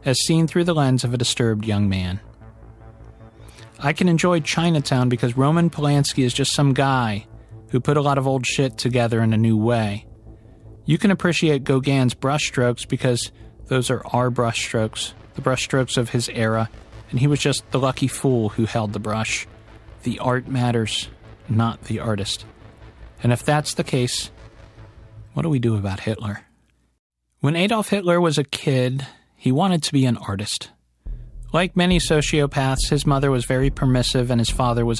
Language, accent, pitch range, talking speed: English, American, 110-135 Hz, 170 wpm